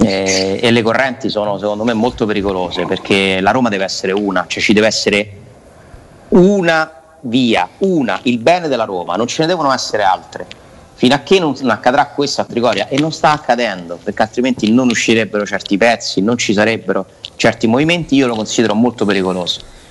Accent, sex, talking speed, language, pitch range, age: native, male, 180 wpm, Italian, 100-130 Hz, 30-49